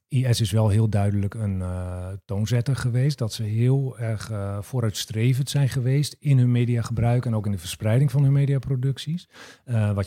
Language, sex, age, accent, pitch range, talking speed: Dutch, male, 40-59, Dutch, 105-125 Hz, 175 wpm